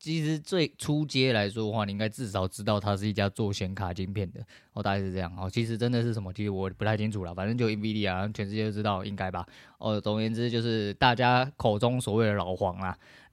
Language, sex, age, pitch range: Chinese, male, 20-39, 100-120 Hz